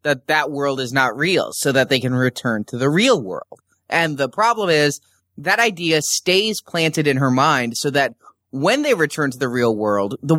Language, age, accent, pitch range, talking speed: English, 20-39, American, 125-185 Hz, 210 wpm